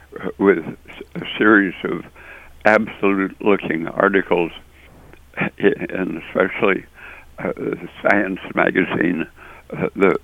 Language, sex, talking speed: English, male, 75 wpm